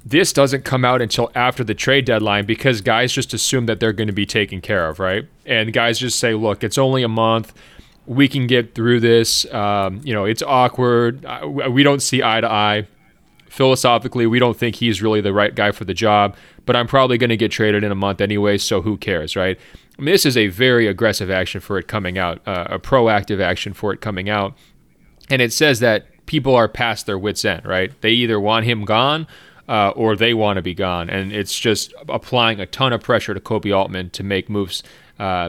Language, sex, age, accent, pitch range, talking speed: English, male, 30-49, American, 100-125 Hz, 225 wpm